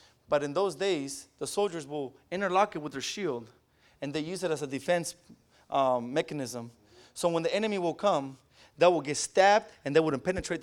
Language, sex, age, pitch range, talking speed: English, male, 20-39, 155-215 Hz, 200 wpm